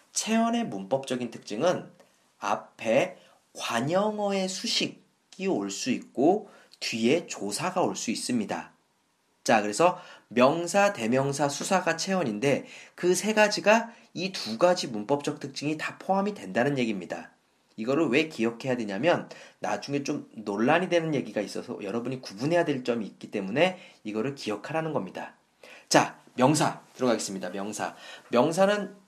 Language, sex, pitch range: Korean, male, 130-190 Hz